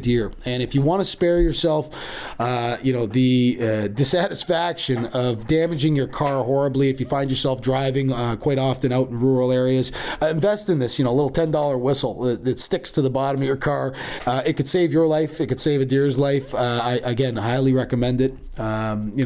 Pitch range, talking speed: 110-135 Hz, 220 wpm